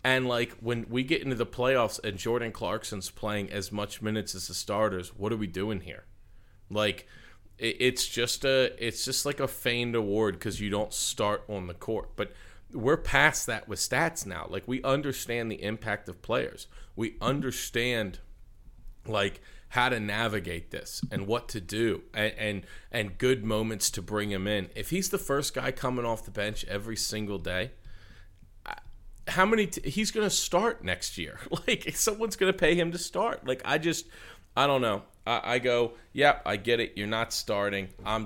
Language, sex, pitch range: English, male, 100-125 Hz